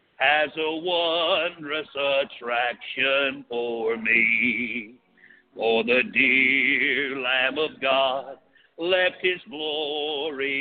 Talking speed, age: 85 wpm, 50-69